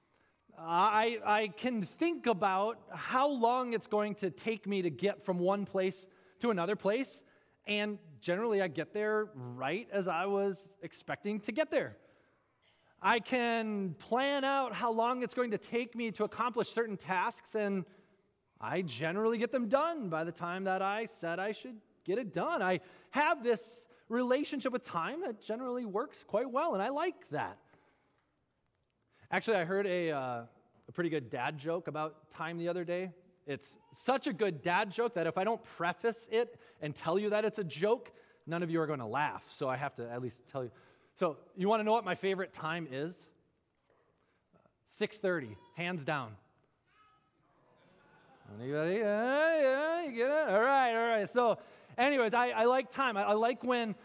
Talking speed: 185 wpm